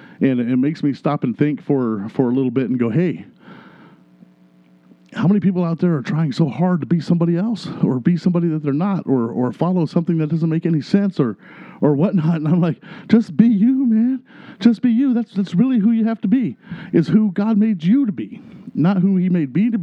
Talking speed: 235 wpm